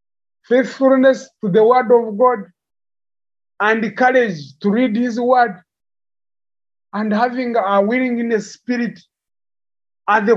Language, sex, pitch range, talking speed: English, male, 185-255 Hz, 110 wpm